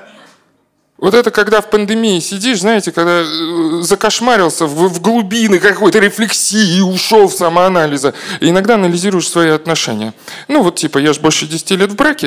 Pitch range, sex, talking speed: 165-215 Hz, male, 150 wpm